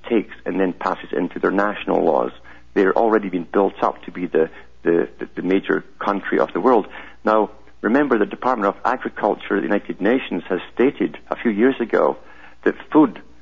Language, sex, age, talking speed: English, male, 50-69, 185 wpm